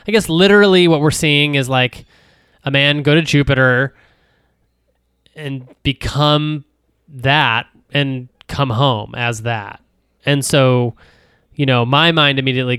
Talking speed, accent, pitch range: 130 wpm, American, 115-140 Hz